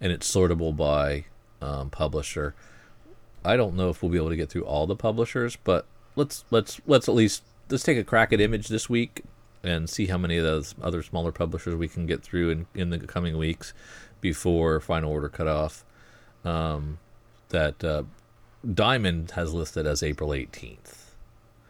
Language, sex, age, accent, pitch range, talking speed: English, male, 40-59, American, 80-110 Hz, 180 wpm